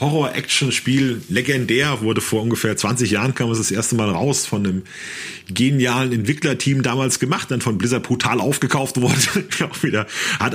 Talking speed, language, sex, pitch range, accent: 160 wpm, German, male, 110-140 Hz, German